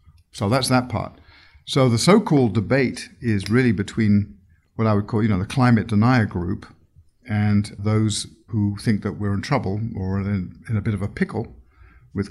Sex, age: male, 50-69